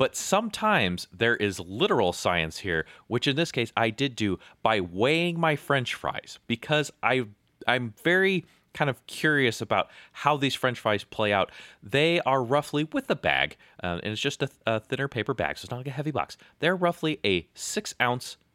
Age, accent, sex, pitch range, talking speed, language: 30-49, American, male, 100-145 Hz, 195 wpm, English